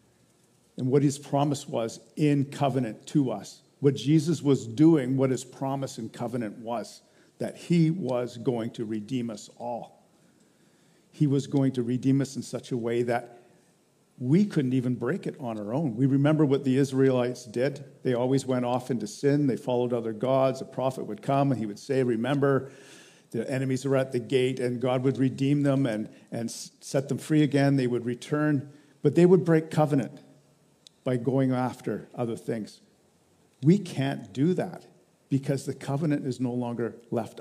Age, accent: 50-69, American